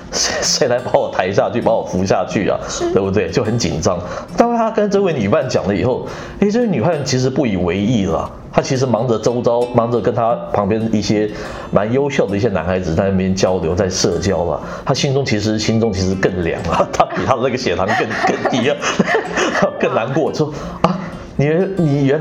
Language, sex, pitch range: Chinese, male, 100-145 Hz